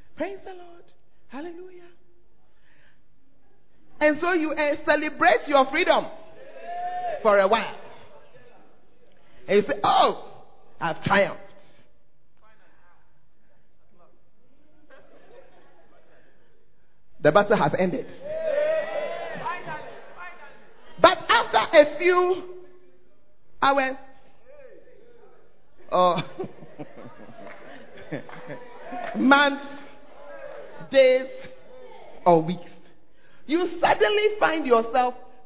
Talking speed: 65 wpm